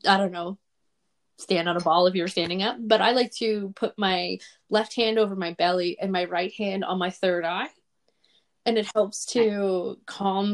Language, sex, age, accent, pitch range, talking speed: English, female, 20-39, American, 185-225 Hz, 200 wpm